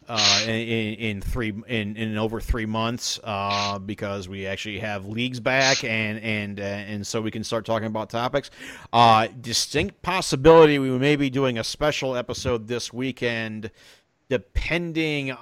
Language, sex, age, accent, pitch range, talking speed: English, male, 40-59, American, 105-125 Hz, 155 wpm